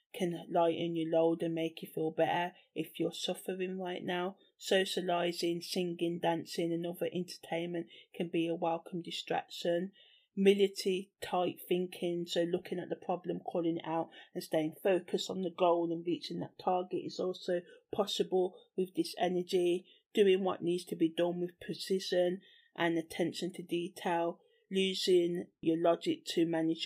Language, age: English, 30-49